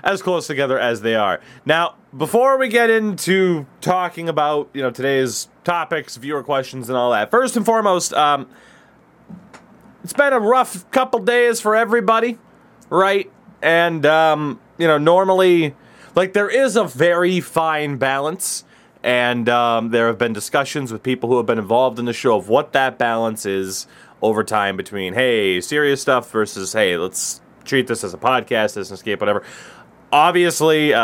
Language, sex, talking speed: English, male, 165 wpm